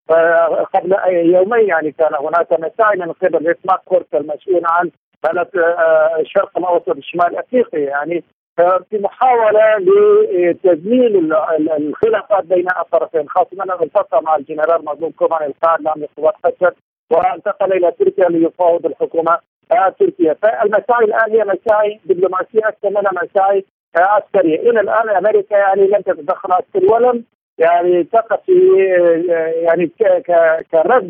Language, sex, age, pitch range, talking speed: Arabic, male, 50-69, 170-210 Hz, 120 wpm